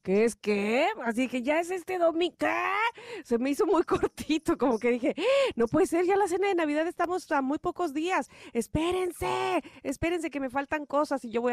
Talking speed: 210 wpm